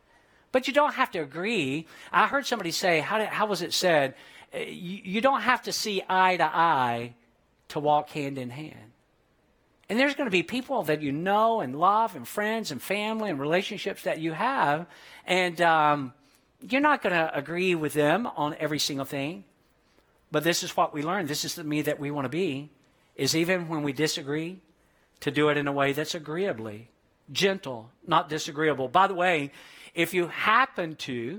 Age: 50-69